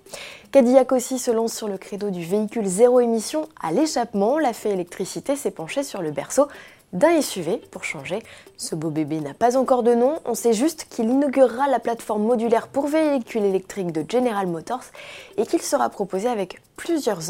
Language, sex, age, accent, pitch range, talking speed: French, female, 20-39, French, 185-260 Hz, 185 wpm